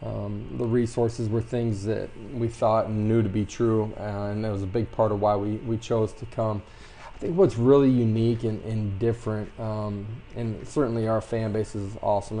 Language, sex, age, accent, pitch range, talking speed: English, male, 20-39, American, 105-115 Hz, 210 wpm